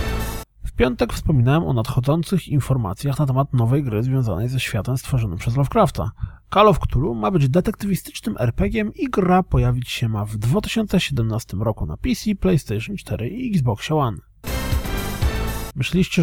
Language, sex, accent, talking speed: Polish, male, native, 145 wpm